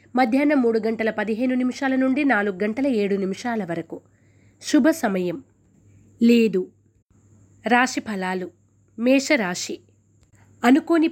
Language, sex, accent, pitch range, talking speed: Telugu, female, native, 195-250 Hz, 95 wpm